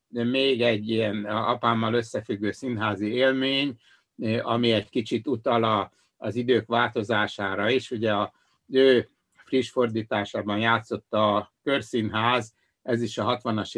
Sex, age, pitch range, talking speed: male, 60-79, 105-120 Hz, 120 wpm